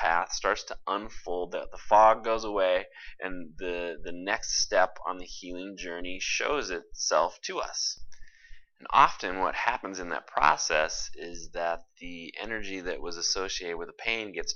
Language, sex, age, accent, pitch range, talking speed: English, male, 30-49, American, 85-100 Hz, 160 wpm